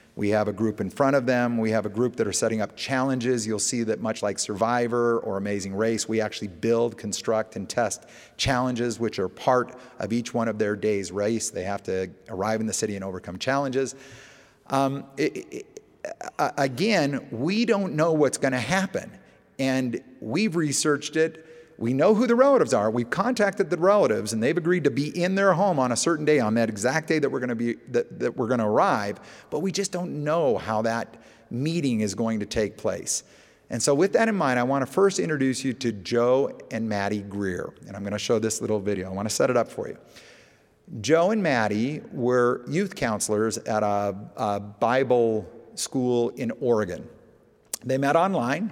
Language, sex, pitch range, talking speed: English, male, 110-145 Hz, 195 wpm